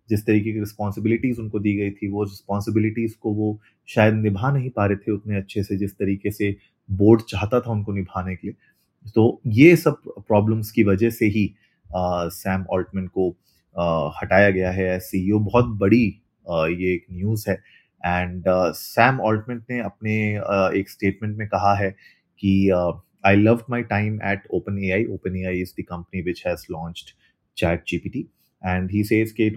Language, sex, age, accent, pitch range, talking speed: Hindi, male, 30-49, native, 95-110 Hz, 175 wpm